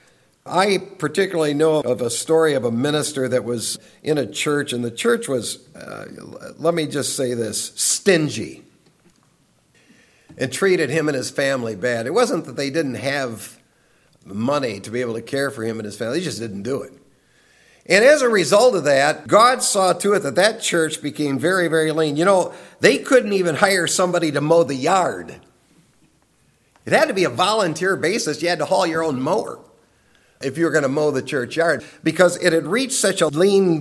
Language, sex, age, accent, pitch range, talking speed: English, male, 60-79, American, 155-215 Hz, 195 wpm